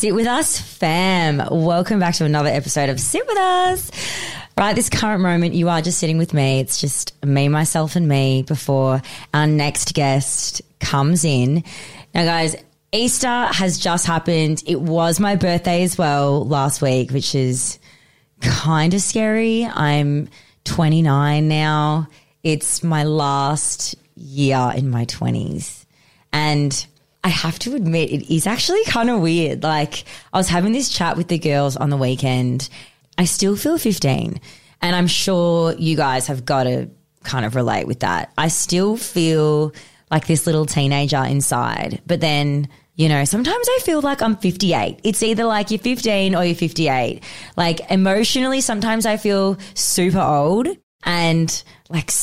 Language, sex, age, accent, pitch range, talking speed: English, female, 20-39, Australian, 145-185 Hz, 160 wpm